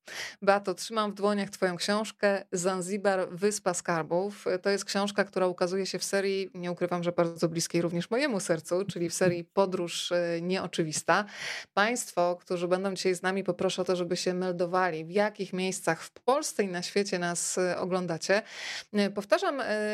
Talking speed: 160 wpm